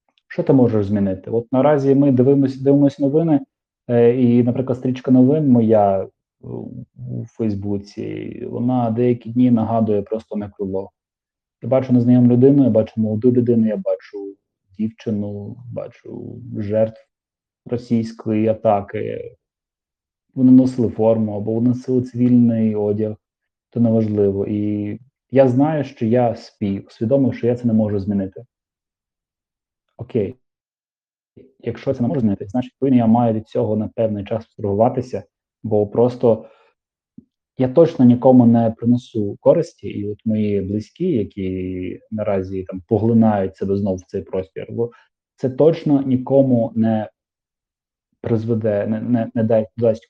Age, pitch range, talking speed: 30-49, 105-125 Hz, 130 wpm